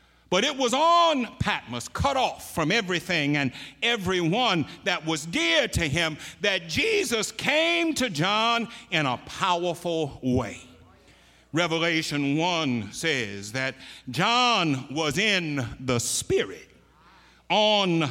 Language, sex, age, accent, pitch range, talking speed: English, male, 60-79, American, 140-215 Hz, 115 wpm